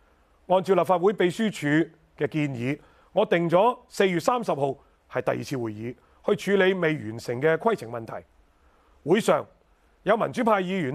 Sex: male